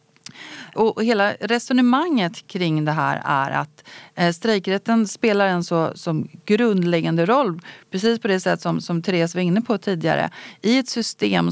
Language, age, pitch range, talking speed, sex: Swedish, 30-49, 160-220 Hz, 145 wpm, female